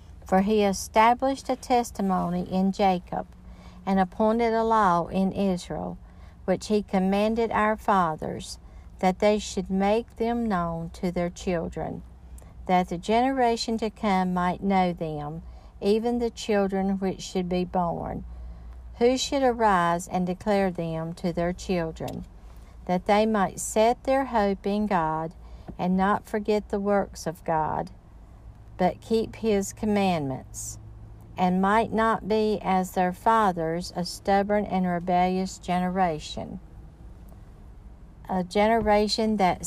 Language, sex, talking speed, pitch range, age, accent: English, female, 130 wpm, 175-210 Hz, 60-79, American